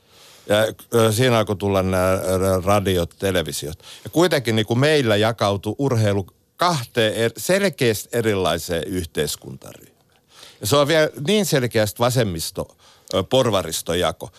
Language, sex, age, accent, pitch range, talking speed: Finnish, male, 60-79, native, 105-135 Hz, 105 wpm